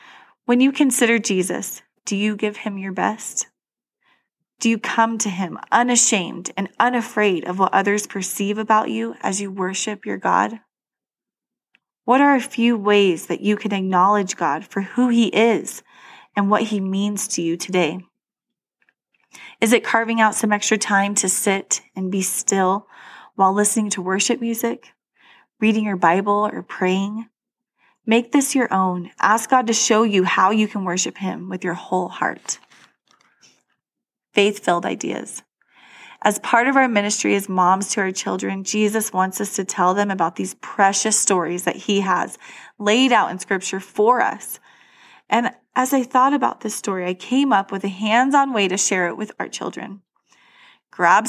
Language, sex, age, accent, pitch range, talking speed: English, female, 20-39, American, 190-230 Hz, 165 wpm